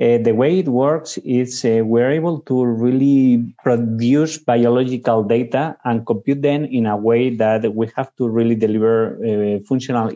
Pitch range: 115-135 Hz